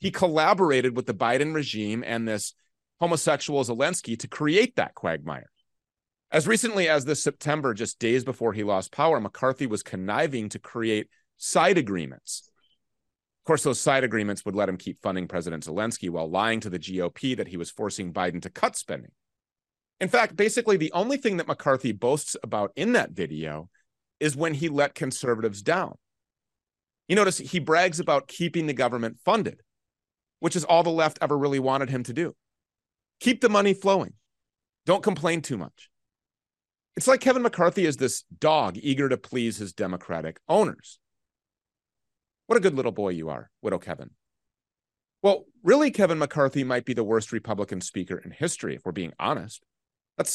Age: 30-49